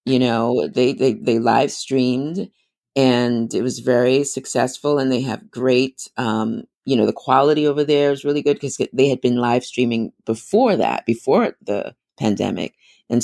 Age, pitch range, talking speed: 30-49, 120-140 Hz, 170 wpm